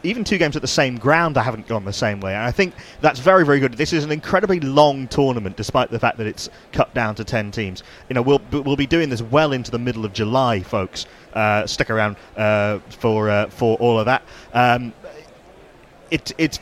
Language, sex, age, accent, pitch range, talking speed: English, male, 30-49, British, 110-145 Hz, 225 wpm